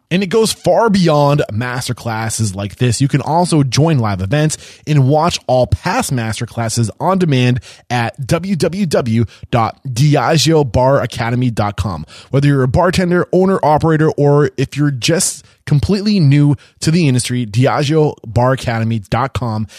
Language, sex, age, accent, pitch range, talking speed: English, male, 20-39, American, 115-160 Hz, 125 wpm